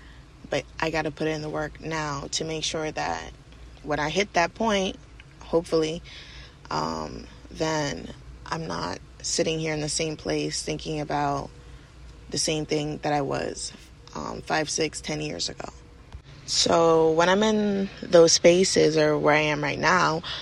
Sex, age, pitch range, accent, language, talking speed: female, 20-39, 150-175 Hz, American, English, 160 wpm